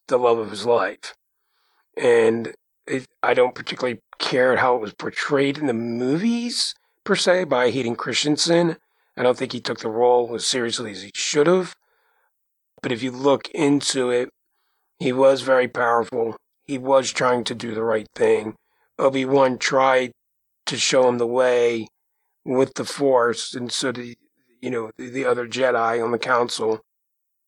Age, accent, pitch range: 40-59, American, 120-175 Hz